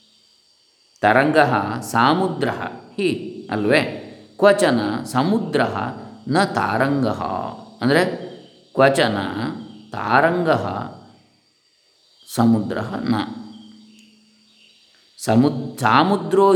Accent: native